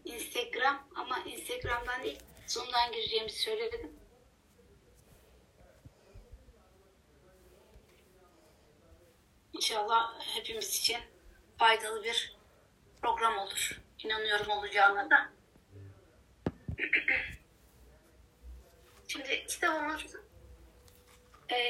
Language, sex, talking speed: Turkish, female, 55 wpm